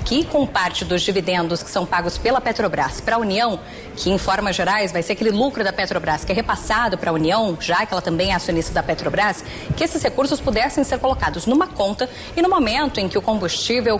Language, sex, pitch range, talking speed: English, female, 190-260 Hz, 225 wpm